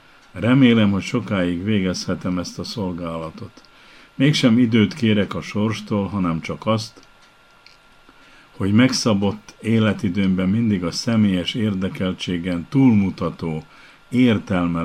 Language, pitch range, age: Hungarian, 90-115 Hz, 50-69